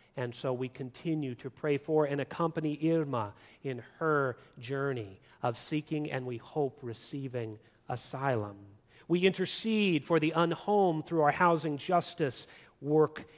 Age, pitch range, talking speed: 40-59, 140-180 Hz, 135 wpm